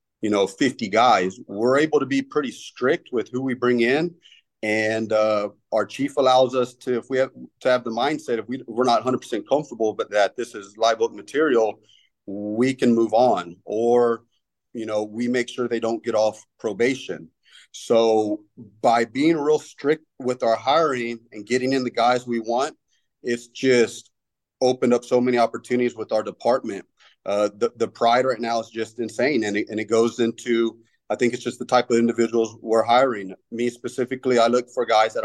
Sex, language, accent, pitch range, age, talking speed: male, English, American, 105-125 Hz, 30-49, 190 wpm